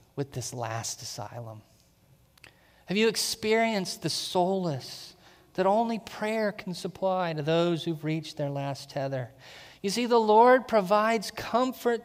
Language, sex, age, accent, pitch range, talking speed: English, male, 40-59, American, 160-220 Hz, 135 wpm